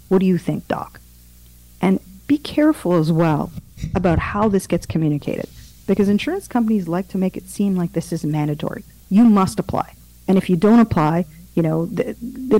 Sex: female